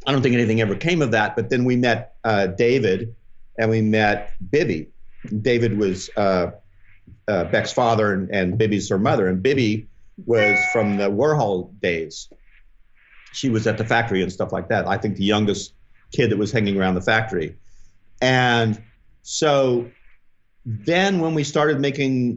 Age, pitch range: 50-69, 100-125 Hz